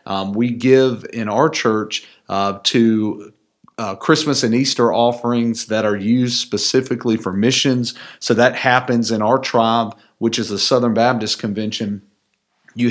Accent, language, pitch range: American, English, 105-115 Hz